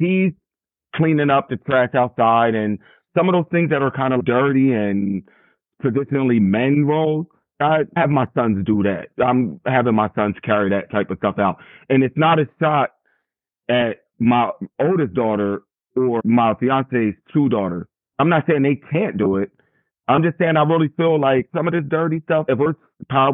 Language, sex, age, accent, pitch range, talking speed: English, male, 30-49, American, 115-145 Hz, 185 wpm